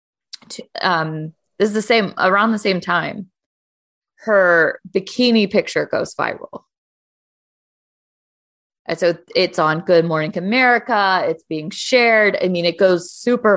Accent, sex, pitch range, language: American, female, 165-215 Hz, English